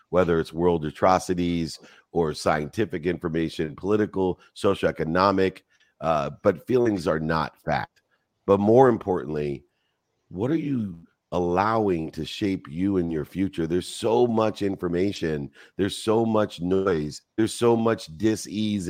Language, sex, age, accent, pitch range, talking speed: English, male, 50-69, American, 80-105 Hz, 125 wpm